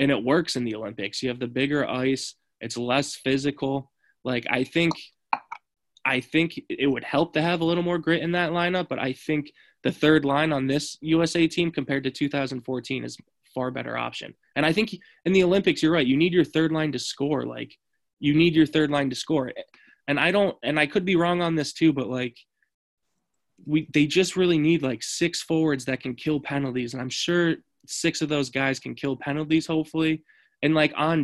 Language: English